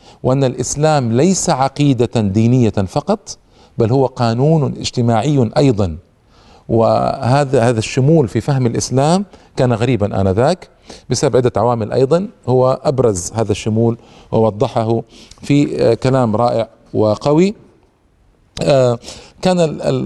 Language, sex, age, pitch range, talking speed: Arabic, male, 40-59, 110-160 Hz, 100 wpm